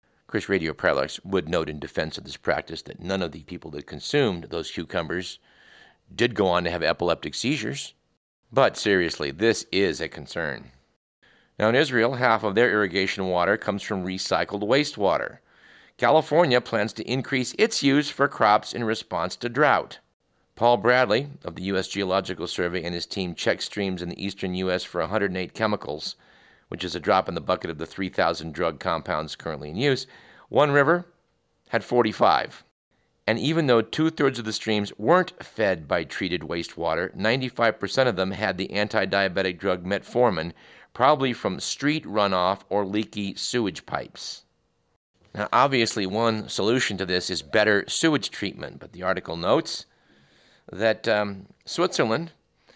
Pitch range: 95-120 Hz